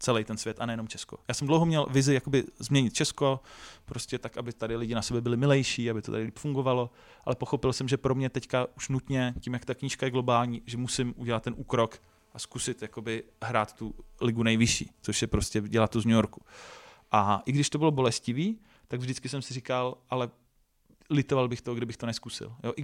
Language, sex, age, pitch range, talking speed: Czech, male, 30-49, 115-135 Hz, 215 wpm